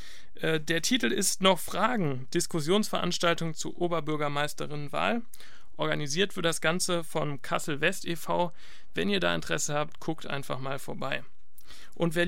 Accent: German